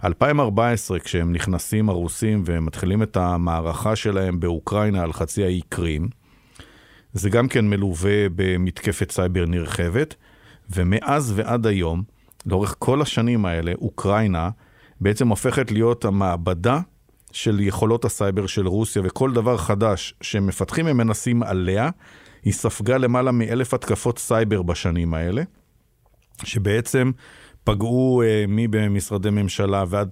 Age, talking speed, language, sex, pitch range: 50-69, 120 wpm, Hebrew, male, 95-120 Hz